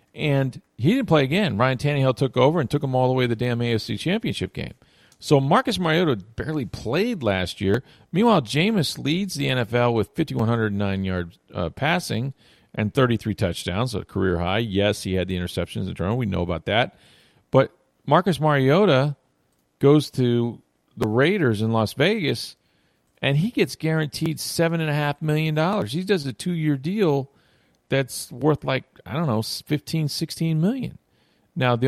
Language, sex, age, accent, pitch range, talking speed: English, male, 40-59, American, 100-150 Hz, 170 wpm